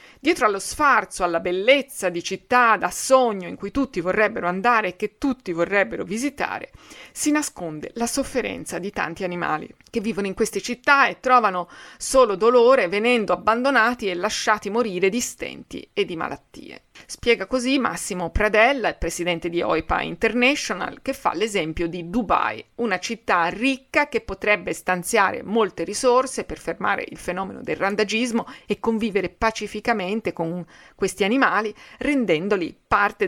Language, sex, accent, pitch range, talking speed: Italian, female, native, 180-240 Hz, 145 wpm